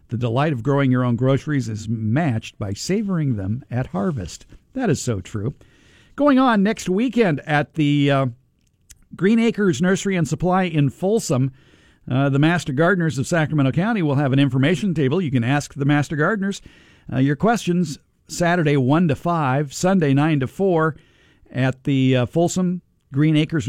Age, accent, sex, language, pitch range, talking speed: 50-69, American, male, English, 120-160 Hz, 170 wpm